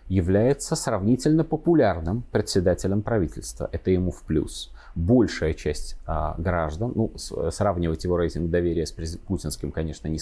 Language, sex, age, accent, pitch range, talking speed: Russian, male, 30-49, native, 85-115 Hz, 125 wpm